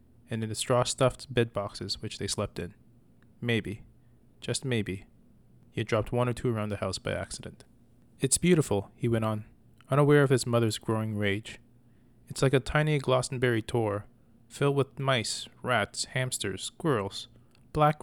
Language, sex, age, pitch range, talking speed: English, male, 20-39, 105-125 Hz, 155 wpm